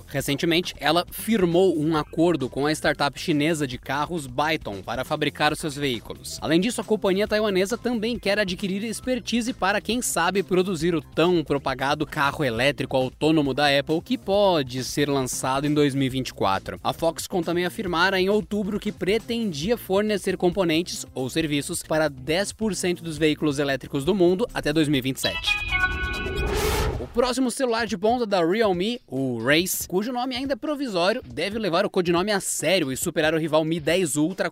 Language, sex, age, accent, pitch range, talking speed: Portuguese, male, 20-39, Brazilian, 150-205 Hz, 160 wpm